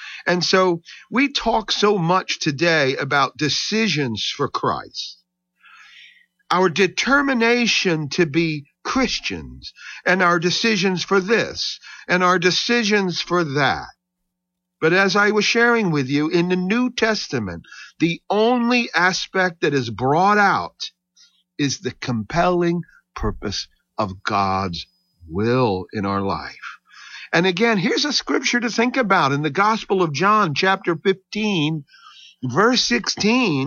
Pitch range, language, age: 135-205 Hz, English, 50-69